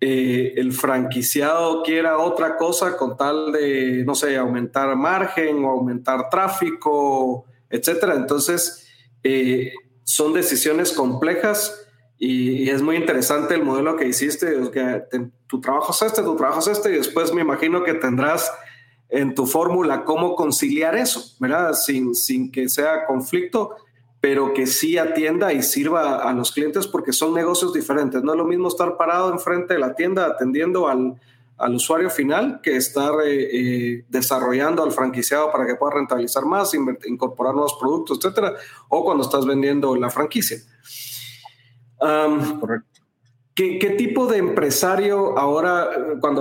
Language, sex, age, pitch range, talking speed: Spanish, male, 40-59, 130-165 Hz, 150 wpm